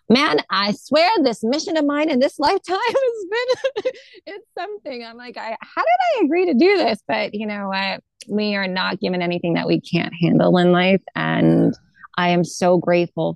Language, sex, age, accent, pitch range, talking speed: English, female, 20-39, American, 185-255 Hz, 200 wpm